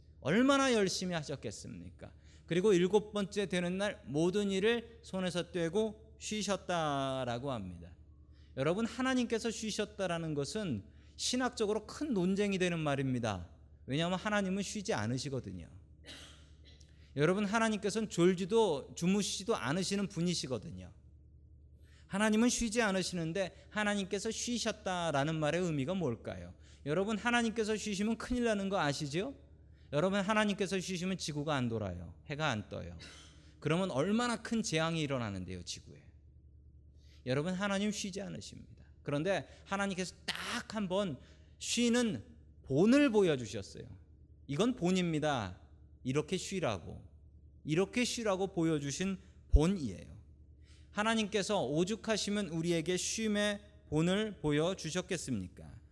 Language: Korean